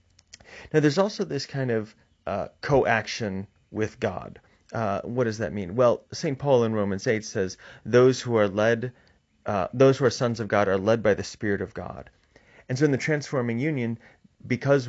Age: 30-49